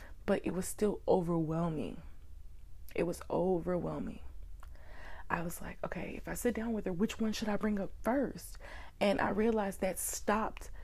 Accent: American